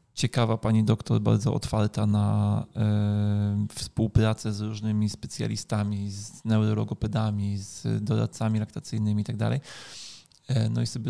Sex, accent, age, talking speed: male, native, 20-39, 115 wpm